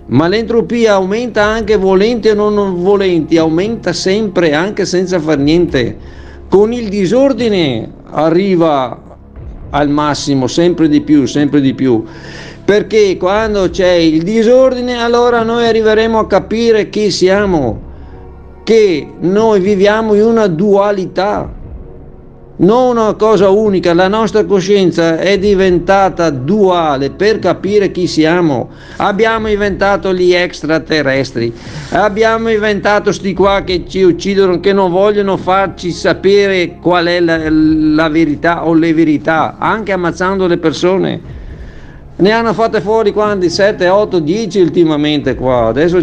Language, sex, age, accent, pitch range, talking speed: Italian, male, 50-69, native, 160-210 Hz, 125 wpm